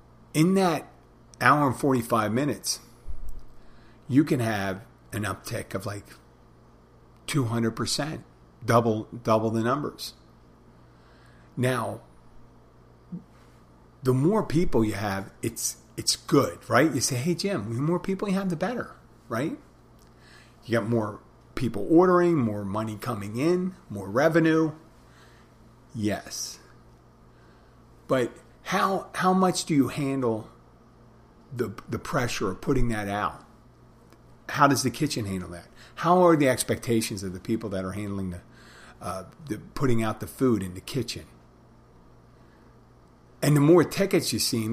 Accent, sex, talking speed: American, male, 130 wpm